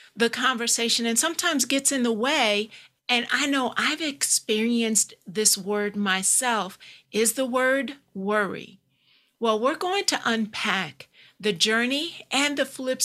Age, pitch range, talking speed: 50-69, 205-255 Hz, 140 wpm